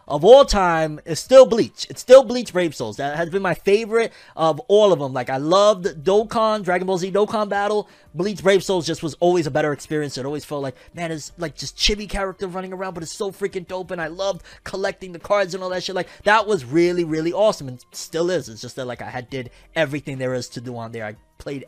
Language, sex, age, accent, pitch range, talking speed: English, male, 20-39, American, 135-190 Hz, 250 wpm